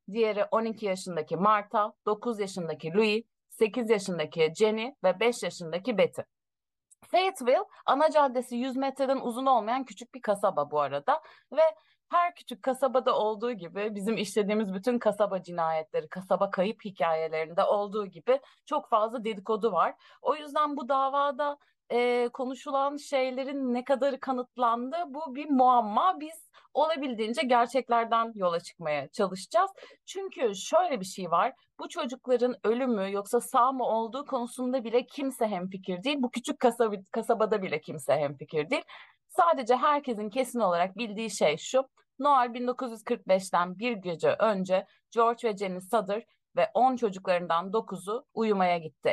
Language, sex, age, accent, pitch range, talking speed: Turkish, female, 30-49, native, 190-255 Hz, 135 wpm